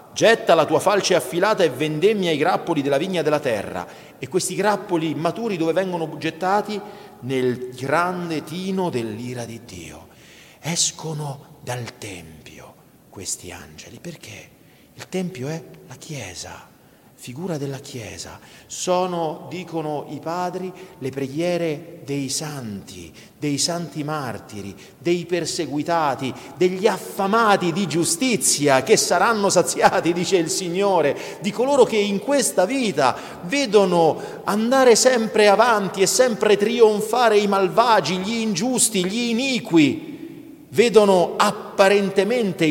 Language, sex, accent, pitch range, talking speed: Italian, male, native, 130-195 Hz, 120 wpm